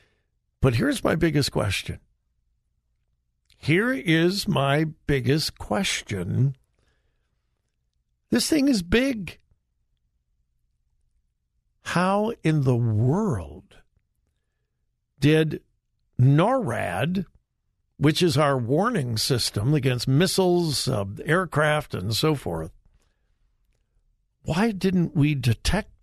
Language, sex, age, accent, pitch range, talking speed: English, male, 60-79, American, 125-210 Hz, 85 wpm